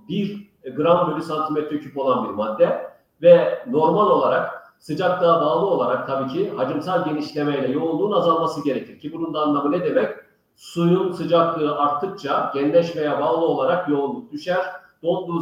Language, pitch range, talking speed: Turkish, 145-185 Hz, 145 wpm